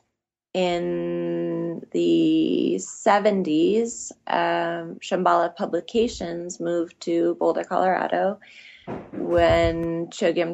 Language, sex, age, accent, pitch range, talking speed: English, female, 20-39, American, 160-185 Hz, 65 wpm